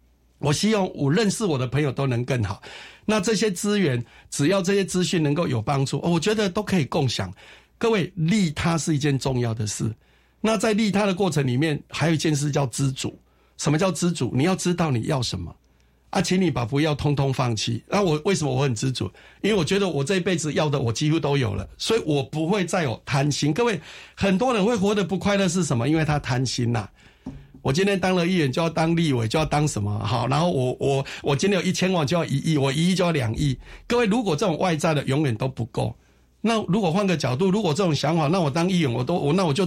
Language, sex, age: Chinese, male, 60-79